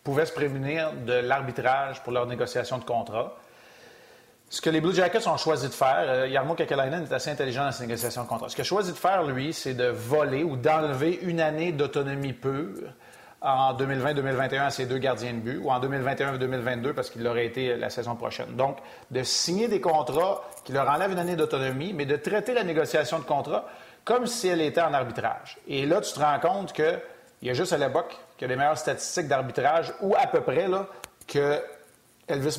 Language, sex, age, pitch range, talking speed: French, male, 30-49, 130-160 Hz, 205 wpm